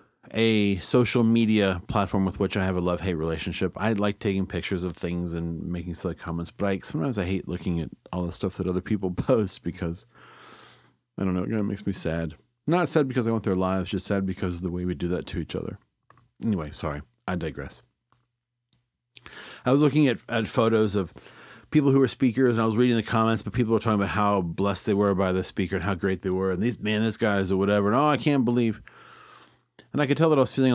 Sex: male